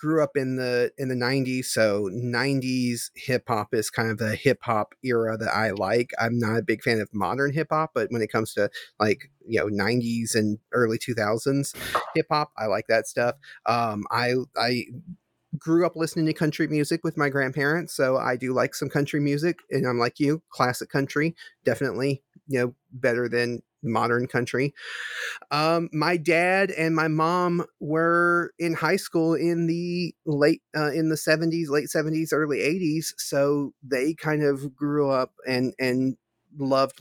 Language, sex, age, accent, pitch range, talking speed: English, male, 30-49, American, 120-155 Hz, 170 wpm